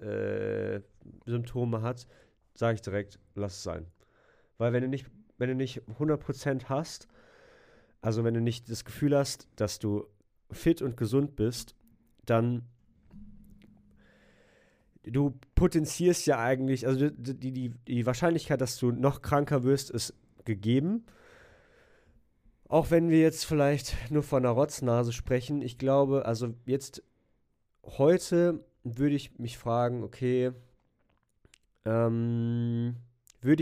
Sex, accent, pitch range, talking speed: male, German, 110-140 Hz, 120 wpm